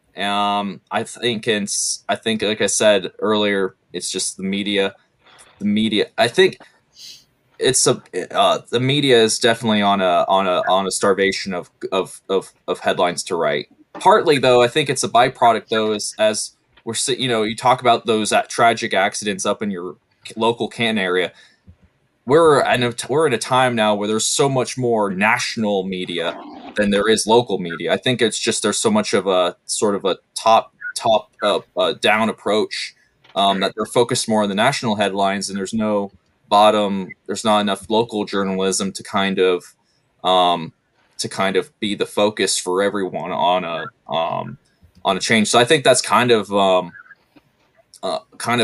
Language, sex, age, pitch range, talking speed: English, male, 20-39, 95-115 Hz, 180 wpm